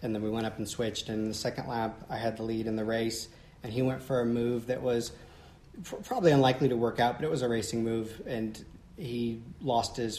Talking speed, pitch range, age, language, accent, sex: 240 wpm, 105-120 Hz, 30-49, English, American, male